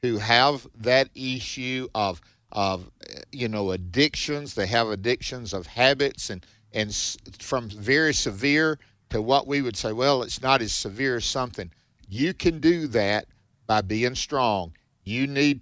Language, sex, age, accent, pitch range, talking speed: English, male, 50-69, American, 110-140 Hz, 155 wpm